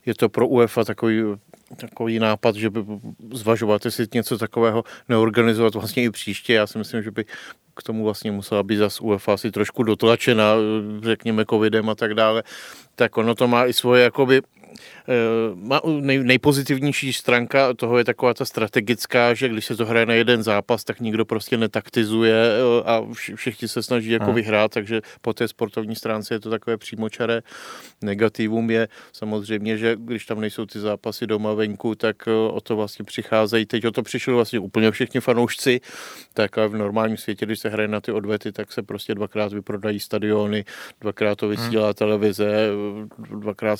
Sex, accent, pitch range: male, native, 105-115 Hz